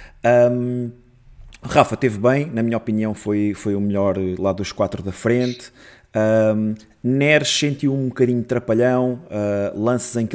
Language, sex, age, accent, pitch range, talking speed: Portuguese, male, 20-39, Portuguese, 100-120 Hz, 155 wpm